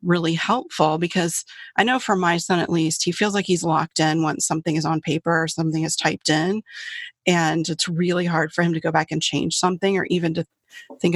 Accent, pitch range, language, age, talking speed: American, 160-185 Hz, English, 30-49, 225 wpm